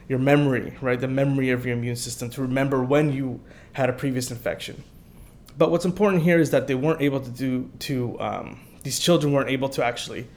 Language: English